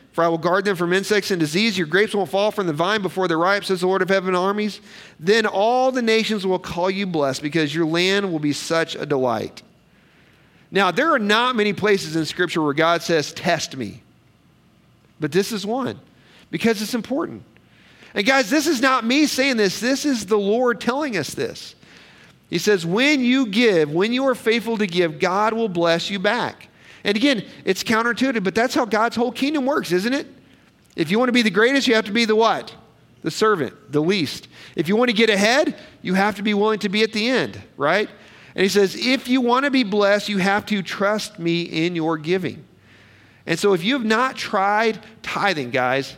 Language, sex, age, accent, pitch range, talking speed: English, male, 40-59, American, 175-230 Hz, 215 wpm